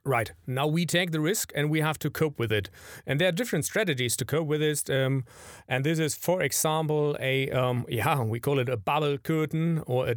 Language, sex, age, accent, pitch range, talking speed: English, male, 40-59, German, 125-155 Hz, 230 wpm